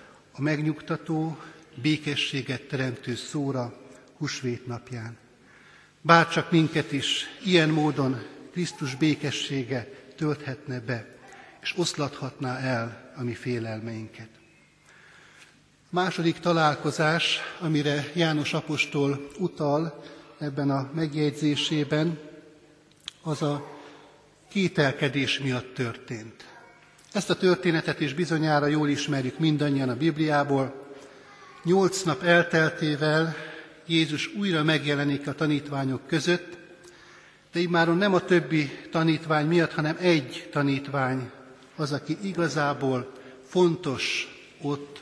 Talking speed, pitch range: 95 wpm, 135-160 Hz